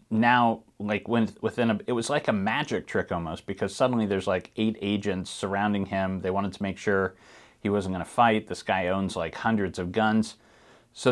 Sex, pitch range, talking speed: male, 100-125 Hz, 205 wpm